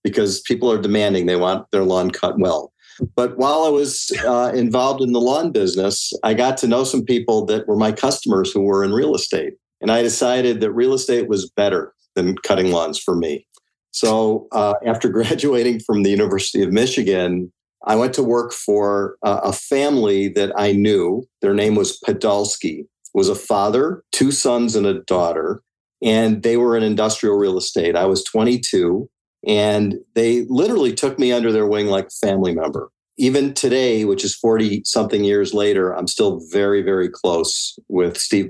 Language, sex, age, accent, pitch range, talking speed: English, male, 50-69, American, 100-125 Hz, 180 wpm